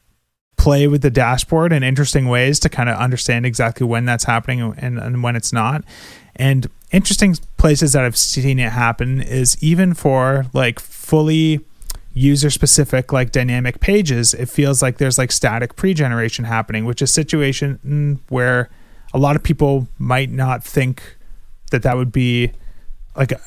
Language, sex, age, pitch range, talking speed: English, male, 30-49, 125-145 Hz, 160 wpm